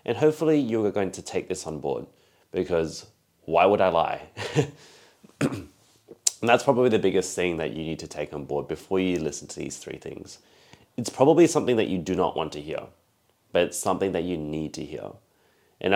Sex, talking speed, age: male, 205 wpm, 30-49